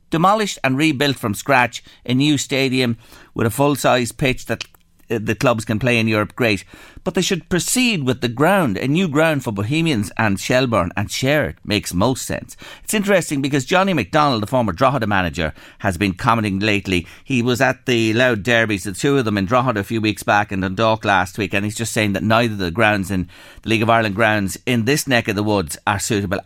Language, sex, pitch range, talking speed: English, male, 105-145 Hz, 220 wpm